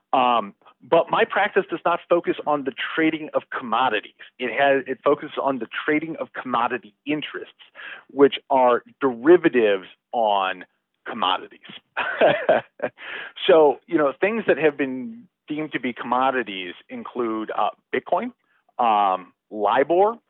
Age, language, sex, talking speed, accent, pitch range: 40-59, English, male, 125 wpm, American, 115-170 Hz